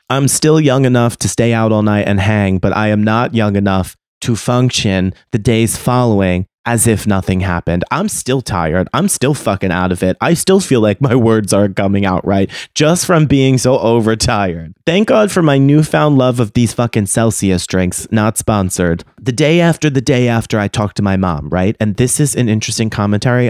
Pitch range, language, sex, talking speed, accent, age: 100-130 Hz, English, male, 205 wpm, American, 30-49